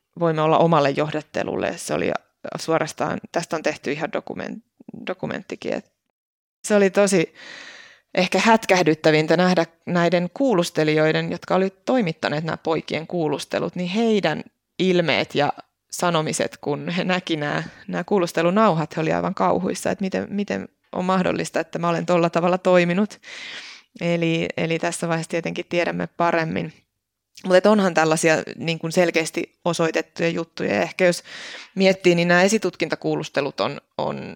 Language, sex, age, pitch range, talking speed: Finnish, female, 20-39, 160-185 Hz, 135 wpm